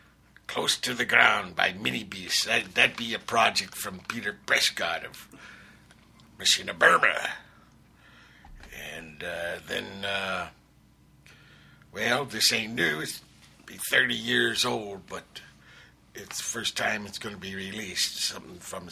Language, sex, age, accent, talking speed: English, male, 60-79, American, 135 wpm